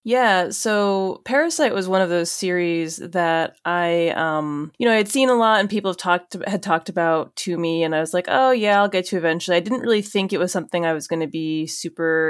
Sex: female